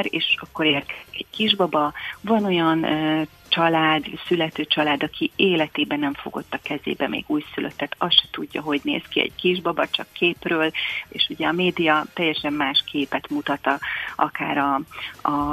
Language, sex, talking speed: Hungarian, female, 145 wpm